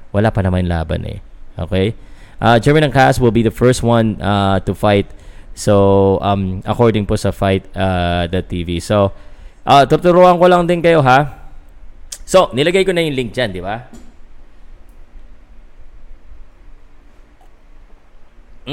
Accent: native